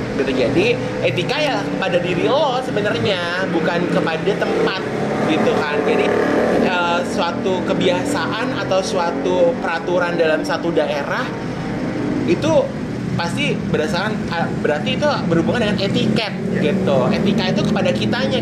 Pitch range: 160-215 Hz